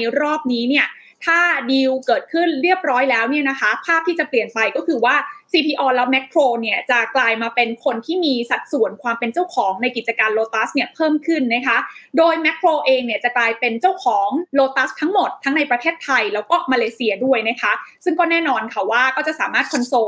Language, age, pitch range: Thai, 20-39, 235-300 Hz